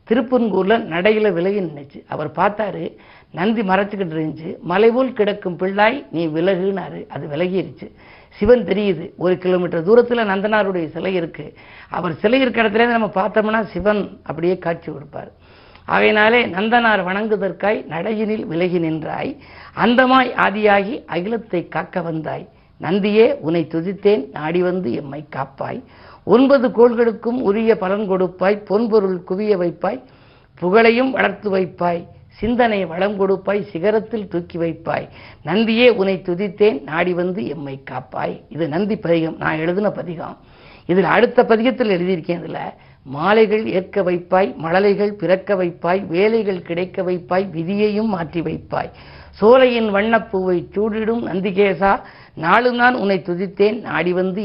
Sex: female